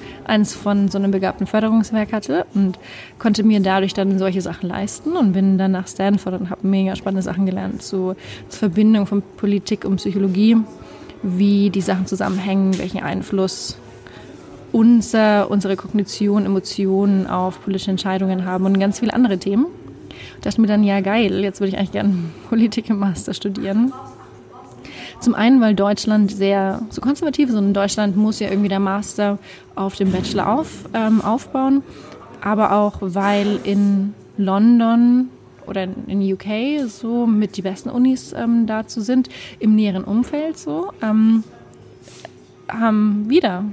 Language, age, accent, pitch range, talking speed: German, 20-39, German, 195-220 Hz, 150 wpm